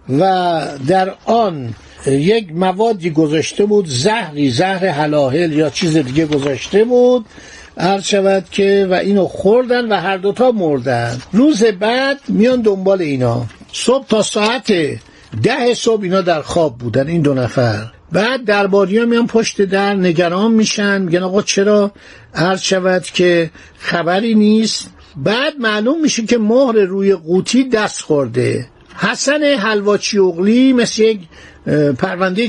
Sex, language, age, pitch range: male, Persian, 60-79, 170-225 Hz